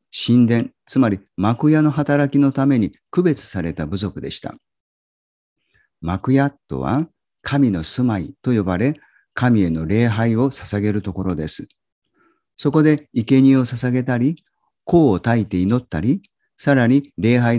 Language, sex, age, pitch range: Japanese, male, 50-69, 95-140 Hz